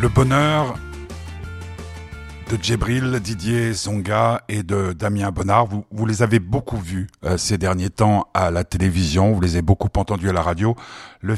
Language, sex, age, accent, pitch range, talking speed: French, male, 50-69, French, 90-105 Hz, 170 wpm